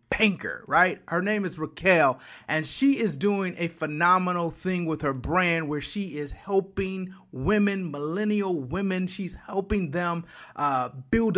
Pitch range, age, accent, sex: 160-205 Hz, 30-49, American, male